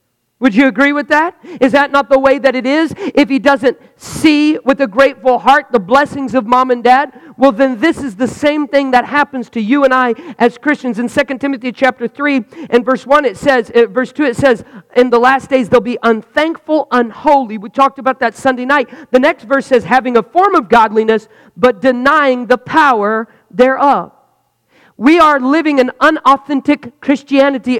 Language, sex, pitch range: English, male, 230-280 Hz